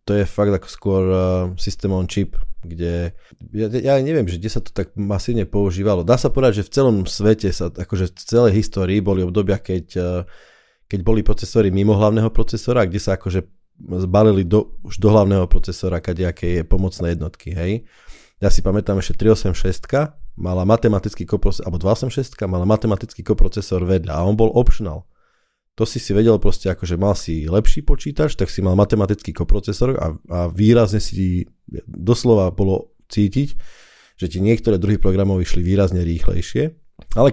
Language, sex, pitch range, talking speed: Slovak, male, 95-110 Hz, 165 wpm